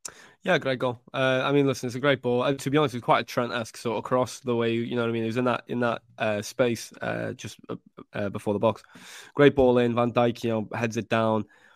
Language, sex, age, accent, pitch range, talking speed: English, male, 10-29, British, 110-125 Hz, 275 wpm